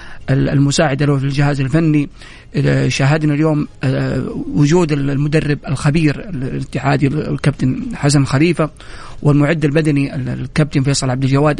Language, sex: Arabic, male